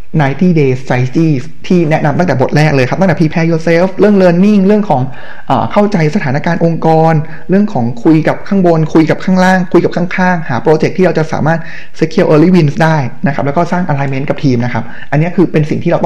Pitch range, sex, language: 130-175 Hz, male, Thai